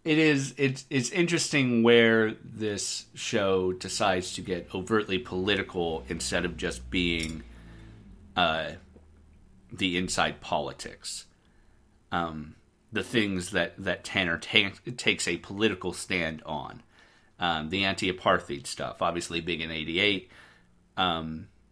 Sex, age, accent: male, 40-59, American